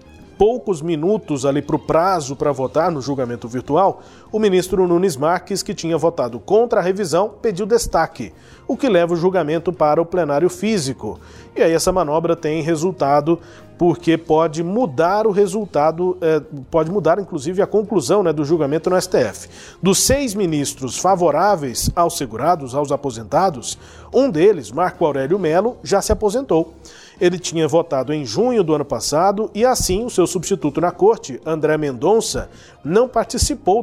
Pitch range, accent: 150-195 Hz, Brazilian